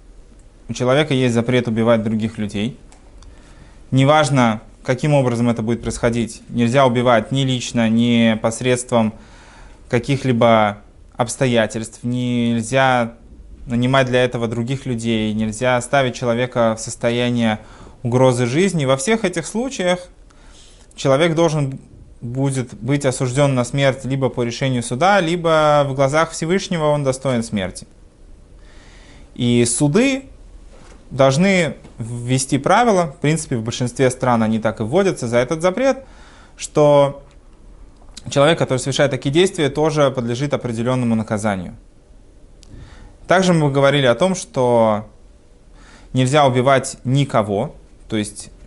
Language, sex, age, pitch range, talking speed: Russian, male, 20-39, 115-145 Hz, 115 wpm